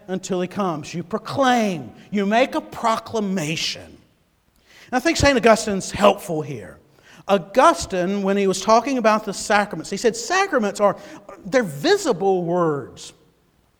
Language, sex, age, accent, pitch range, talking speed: English, male, 50-69, American, 180-255 Hz, 135 wpm